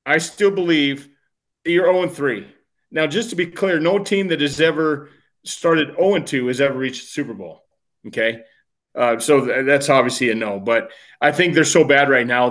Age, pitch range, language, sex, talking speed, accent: 30-49, 135-170 Hz, English, male, 185 wpm, American